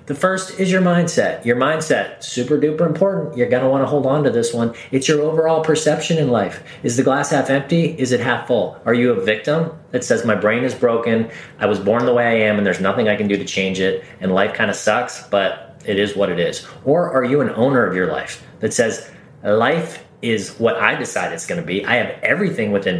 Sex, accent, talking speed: male, American, 250 wpm